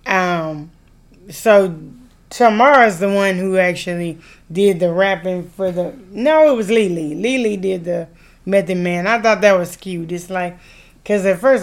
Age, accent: 20-39, American